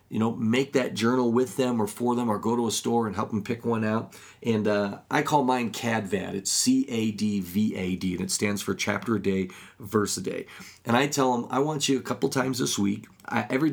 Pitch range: 105-130 Hz